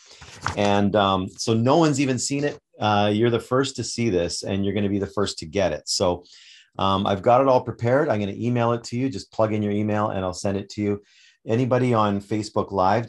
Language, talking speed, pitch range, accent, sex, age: English, 250 wpm, 100-130 Hz, American, male, 40-59